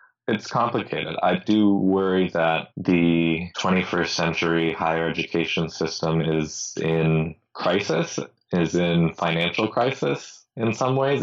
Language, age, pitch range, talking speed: English, 20-39, 80-90 Hz, 120 wpm